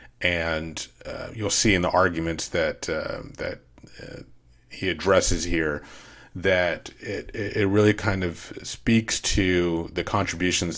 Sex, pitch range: male, 80-95 Hz